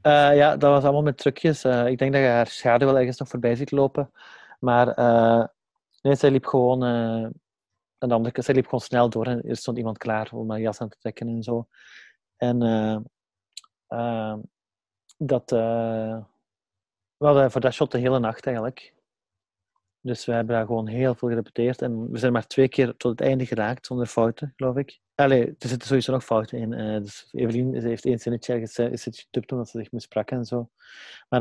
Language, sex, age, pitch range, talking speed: Dutch, male, 30-49, 115-130 Hz, 190 wpm